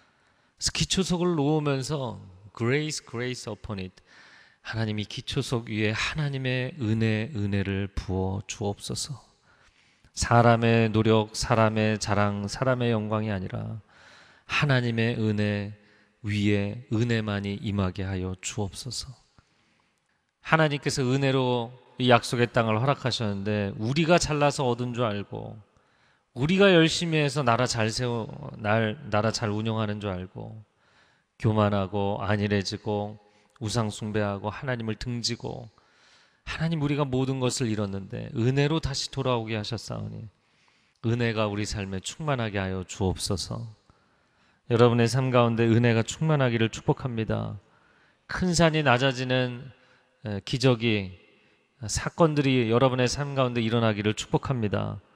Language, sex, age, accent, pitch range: Korean, male, 30-49, native, 105-130 Hz